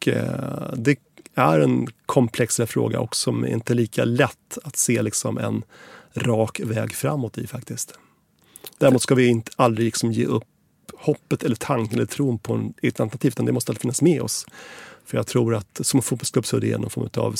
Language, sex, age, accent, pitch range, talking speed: English, male, 30-49, Swedish, 115-135 Hz, 195 wpm